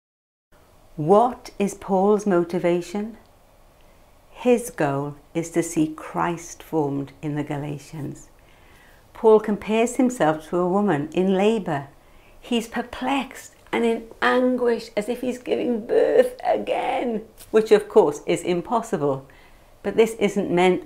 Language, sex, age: English, female, 60-79